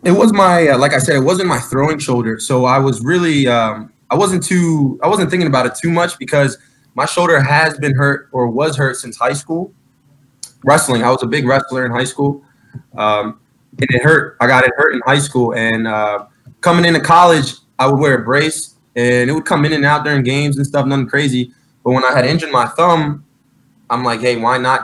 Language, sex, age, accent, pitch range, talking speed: English, male, 20-39, American, 115-145 Hz, 225 wpm